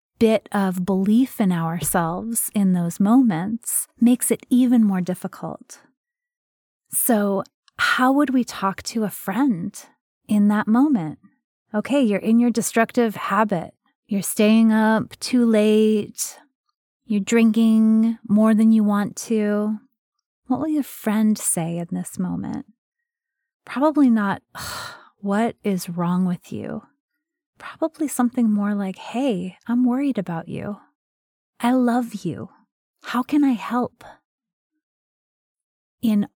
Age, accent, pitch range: 30-49, American, 195-250 Hz